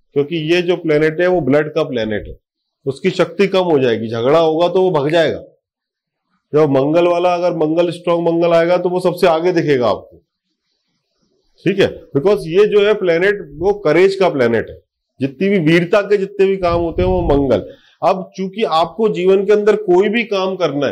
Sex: male